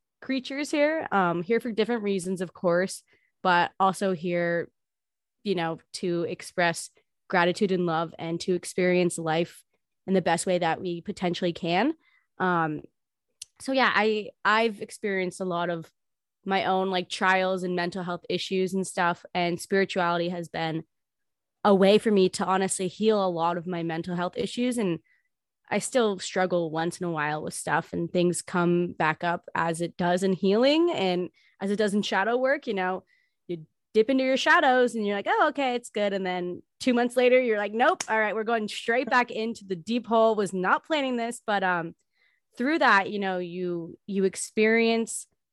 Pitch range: 175-220 Hz